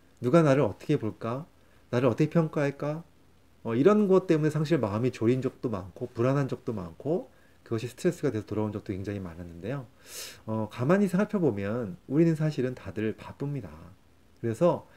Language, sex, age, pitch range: Korean, male, 30-49, 100-155 Hz